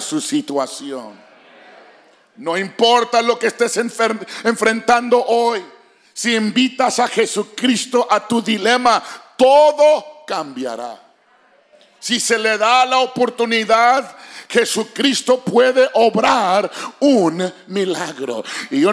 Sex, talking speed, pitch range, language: male, 100 wpm, 215-255 Hz, English